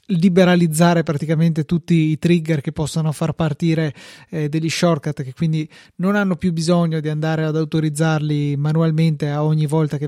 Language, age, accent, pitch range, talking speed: Italian, 20-39, native, 155-175 Hz, 160 wpm